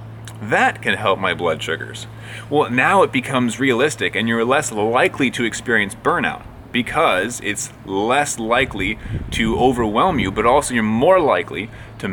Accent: American